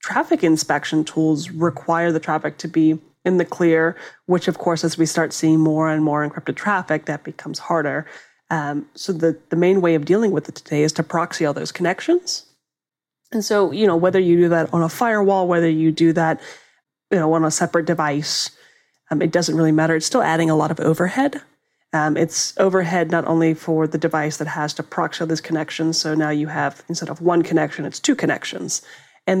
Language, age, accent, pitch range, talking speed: English, 30-49, American, 155-175 Hz, 210 wpm